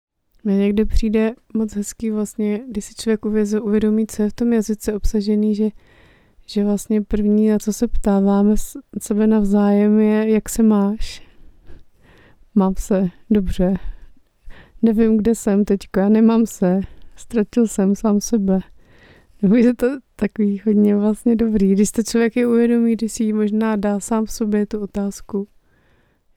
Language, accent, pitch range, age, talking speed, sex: Czech, native, 200-220 Hz, 30-49, 150 wpm, female